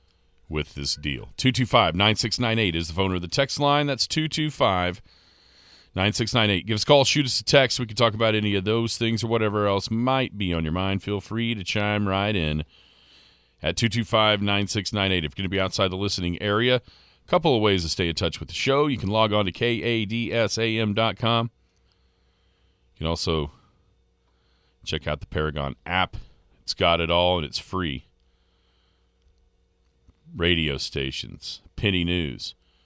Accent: American